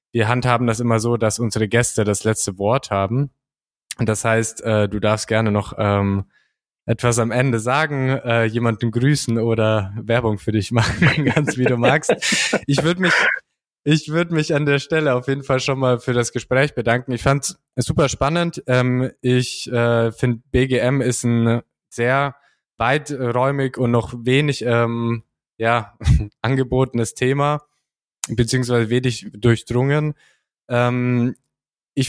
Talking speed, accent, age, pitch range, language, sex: 150 wpm, German, 20-39, 115-135 Hz, German, male